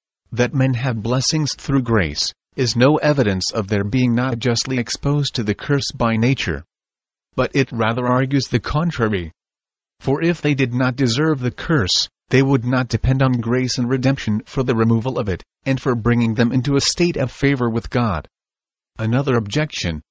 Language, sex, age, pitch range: English, male, 40-59, 115-135 Hz